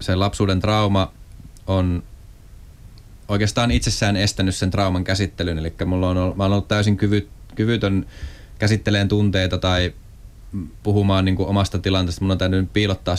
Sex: male